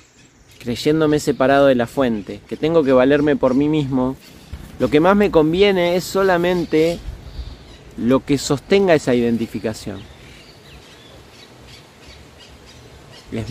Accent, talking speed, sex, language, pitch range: Argentinian, 110 wpm, male, Spanish, 110-160 Hz